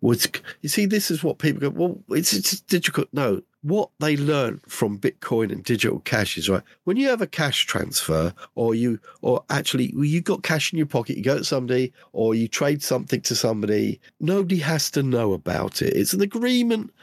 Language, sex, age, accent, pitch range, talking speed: English, male, 50-69, British, 115-170 Hz, 210 wpm